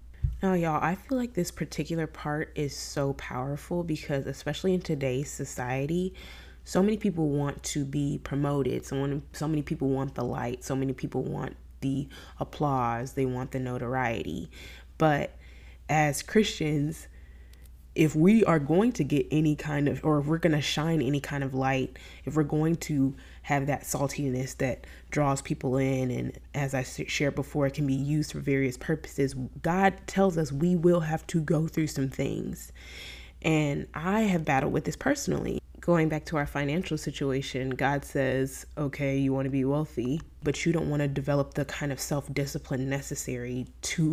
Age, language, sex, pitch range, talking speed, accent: 20-39, English, female, 135-160 Hz, 175 wpm, American